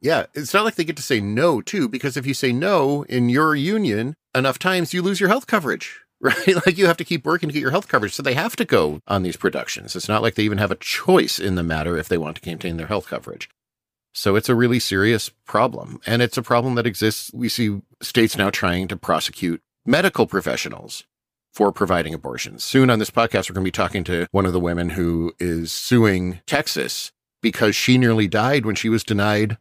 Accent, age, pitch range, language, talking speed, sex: American, 40-59, 100-140 Hz, English, 230 wpm, male